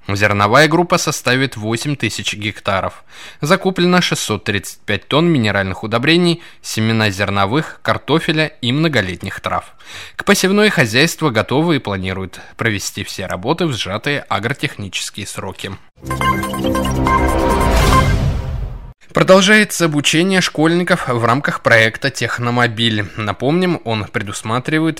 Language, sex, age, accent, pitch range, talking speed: Russian, male, 20-39, native, 105-165 Hz, 95 wpm